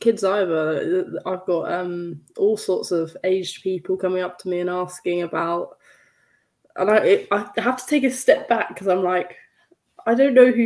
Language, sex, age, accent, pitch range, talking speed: English, female, 10-29, British, 175-220 Hz, 190 wpm